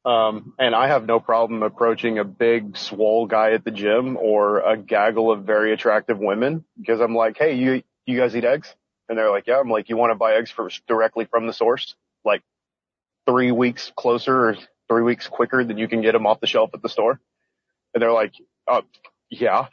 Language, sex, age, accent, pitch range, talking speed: English, male, 30-49, American, 110-120 Hz, 215 wpm